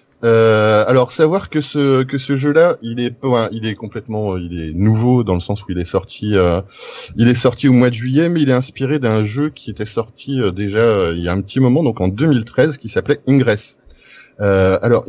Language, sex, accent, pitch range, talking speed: French, male, French, 100-130 Hz, 230 wpm